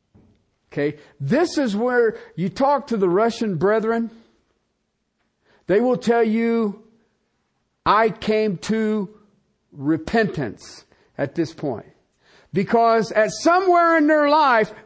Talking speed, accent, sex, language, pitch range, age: 110 wpm, American, male, English, 190-300 Hz, 50-69